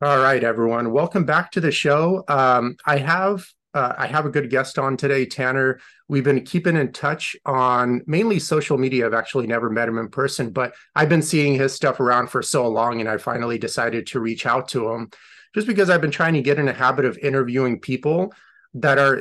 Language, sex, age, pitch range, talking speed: English, male, 30-49, 125-155 Hz, 220 wpm